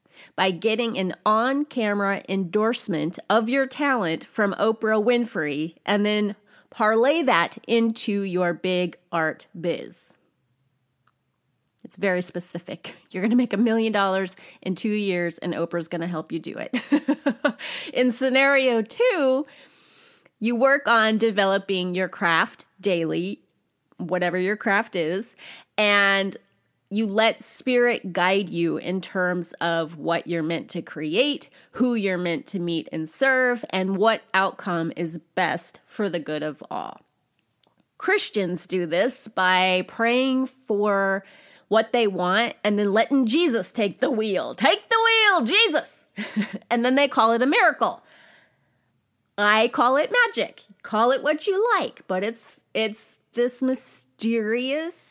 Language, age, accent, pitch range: English, 30-49, American, 180-245 Hz